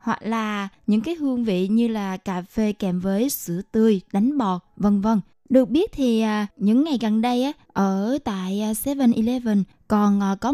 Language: Vietnamese